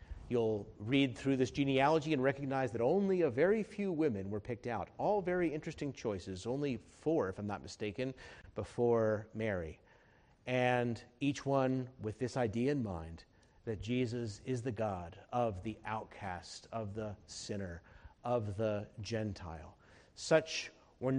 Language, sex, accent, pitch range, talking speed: English, male, American, 100-135 Hz, 145 wpm